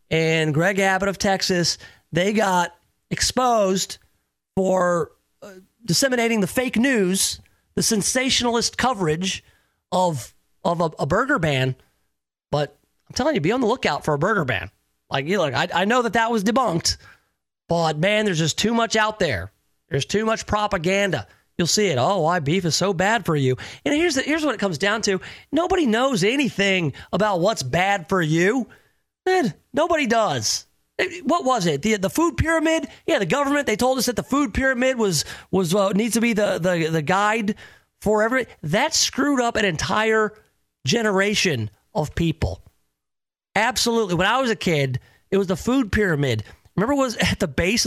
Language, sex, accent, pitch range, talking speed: English, male, American, 155-225 Hz, 175 wpm